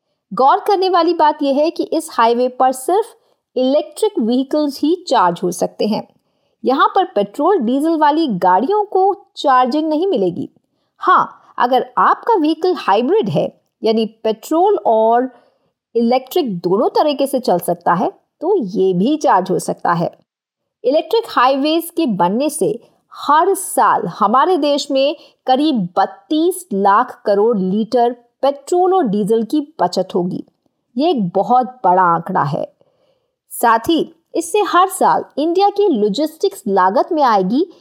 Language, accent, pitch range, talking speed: Hindi, native, 225-360 Hz, 140 wpm